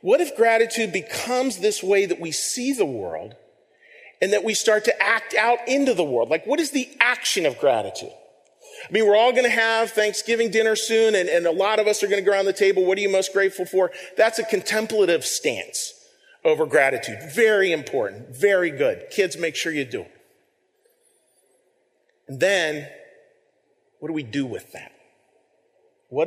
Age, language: 40-59, English